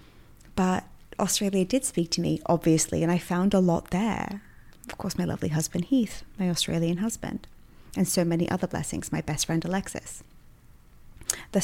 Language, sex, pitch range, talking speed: English, female, 175-210 Hz, 165 wpm